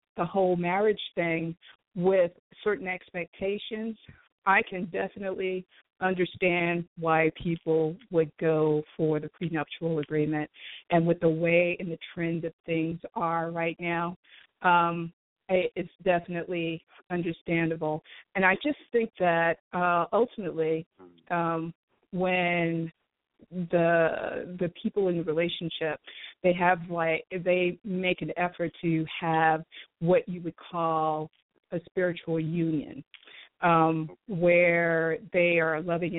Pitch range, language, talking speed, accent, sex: 165-180 Hz, English, 120 wpm, American, female